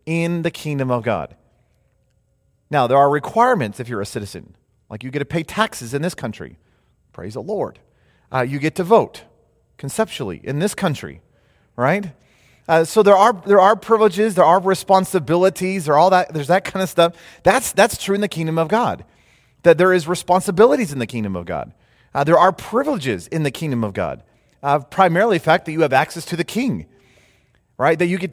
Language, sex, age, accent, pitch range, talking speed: English, male, 30-49, American, 140-195 Hz, 200 wpm